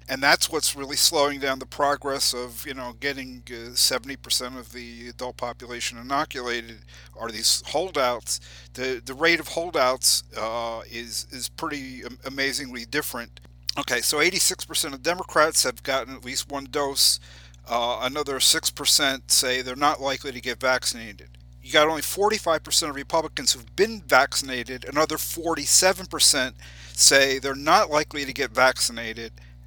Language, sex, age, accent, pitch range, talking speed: English, male, 50-69, American, 120-145 Hz, 145 wpm